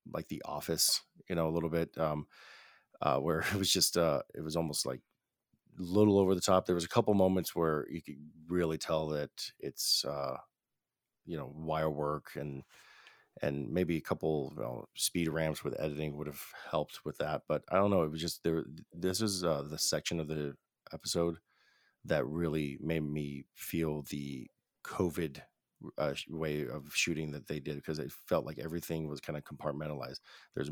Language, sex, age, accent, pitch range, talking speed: English, male, 40-59, American, 75-85 Hz, 190 wpm